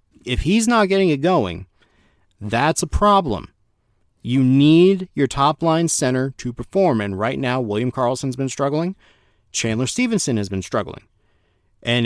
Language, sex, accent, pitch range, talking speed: English, male, American, 105-135 Hz, 150 wpm